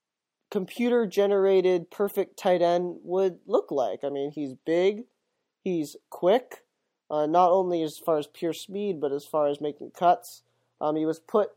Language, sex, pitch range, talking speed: English, male, 145-185 Hz, 160 wpm